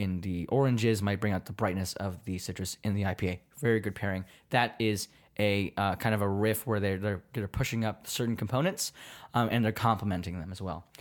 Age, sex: 20-39, male